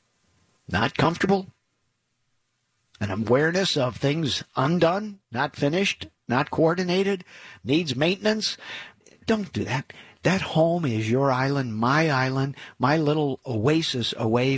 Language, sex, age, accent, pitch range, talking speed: English, male, 50-69, American, 120-165 Hz, 110 wpm